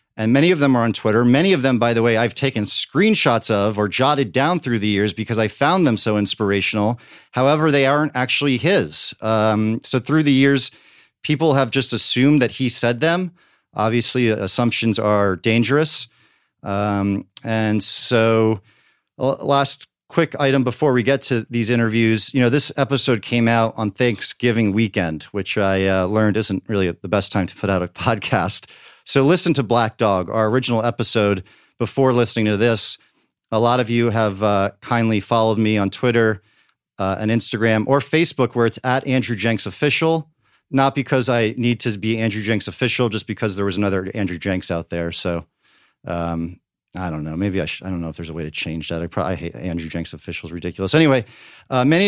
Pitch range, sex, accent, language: 100-130 Hz, male, American, English